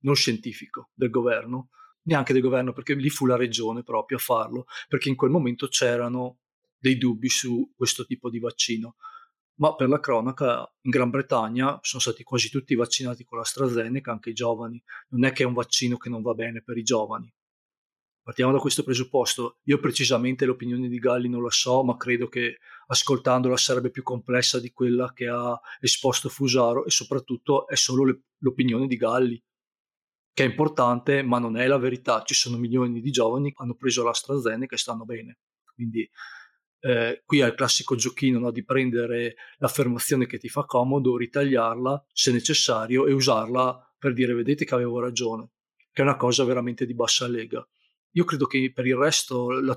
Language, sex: Italian, male